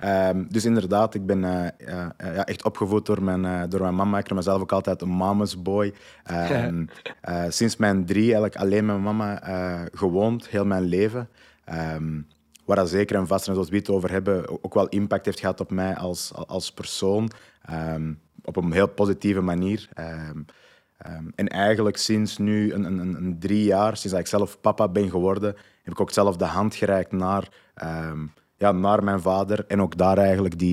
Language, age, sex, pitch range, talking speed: English, 20-39, male, 90-105 Hz, 200 wpm